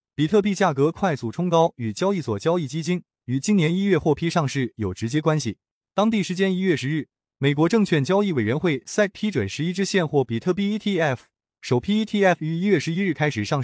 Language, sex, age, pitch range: Chinese, male, 20-39, 130-185 Hz